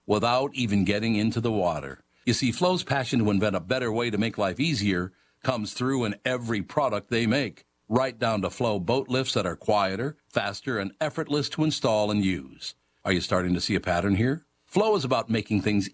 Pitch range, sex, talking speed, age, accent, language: 95-125 Hz, male, 205 wpm, 60-79, American, English